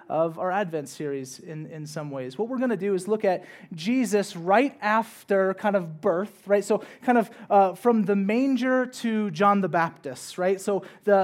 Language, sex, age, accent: English, male, 30-49, American